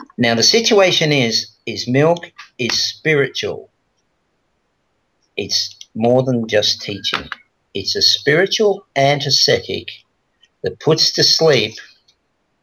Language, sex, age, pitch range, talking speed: English, male, 50-69, 100-140 Hz, 100 wpm